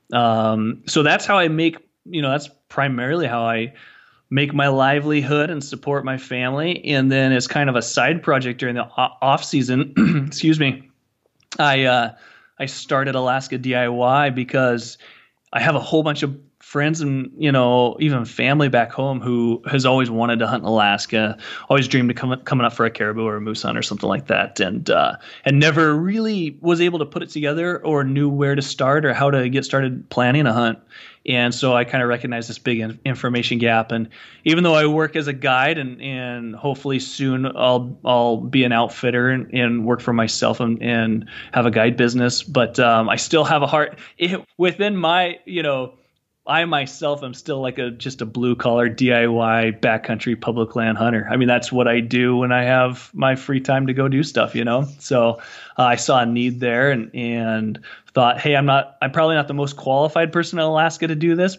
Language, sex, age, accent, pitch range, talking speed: English, male, 30-49, American, 120-145 Hz, 205 wpm